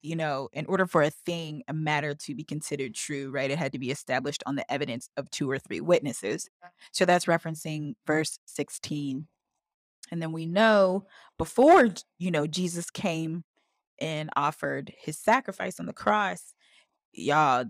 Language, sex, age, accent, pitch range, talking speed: English, female, 20-39, American, 165-245 Hz, 165 wpm